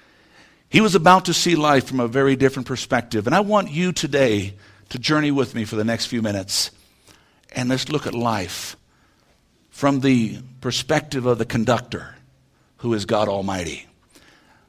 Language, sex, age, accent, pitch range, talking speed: English, male, 60-79, American, 115-185 Hz, 165 wpm